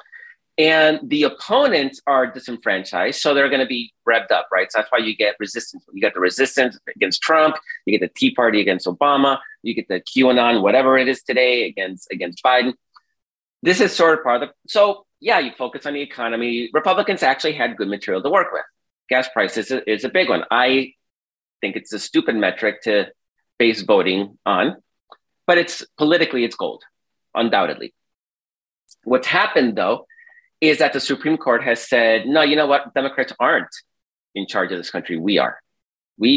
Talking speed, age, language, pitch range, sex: 185 wpm, 30-49, English, 115-155 Hz, male